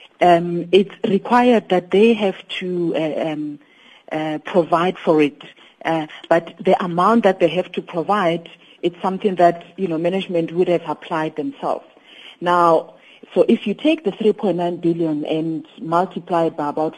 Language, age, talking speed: English, 50-69, 160 wpm